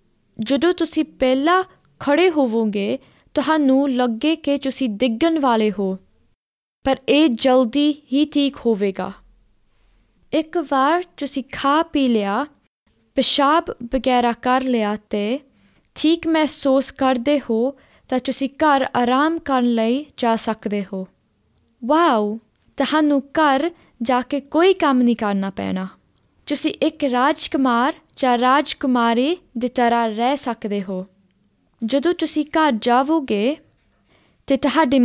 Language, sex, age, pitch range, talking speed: Punjabi, female, 20-39, 230-290 Hz, 115 wpm